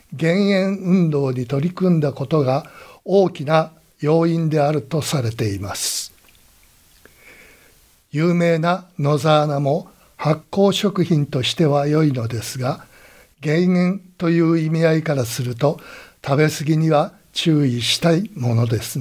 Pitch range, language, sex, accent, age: 135-170 Hz, Japanese, male, native, 60-79